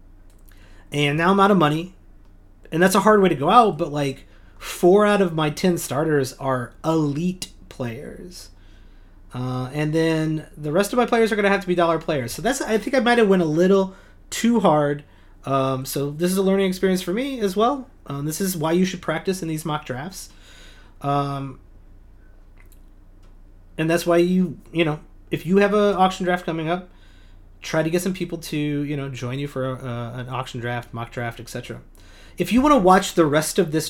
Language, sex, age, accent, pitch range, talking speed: English, male, 30-49, American, 125-175 Hz, 210 wpm